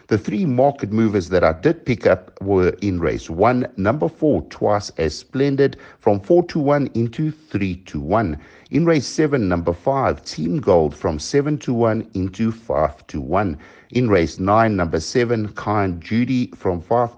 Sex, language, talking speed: male, English, 175 wpm